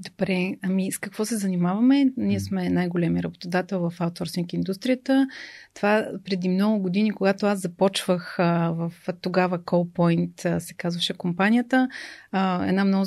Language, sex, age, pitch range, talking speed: Bulgarian, female, 30-49, 185-210 Hz, 140 wpm